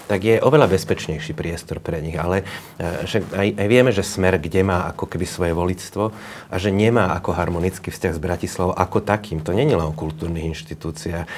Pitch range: 85-105 Hz